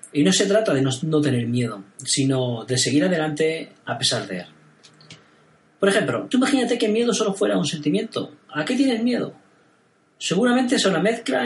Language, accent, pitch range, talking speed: Spanish, Spanish, 130-185 Hz, 190 wpm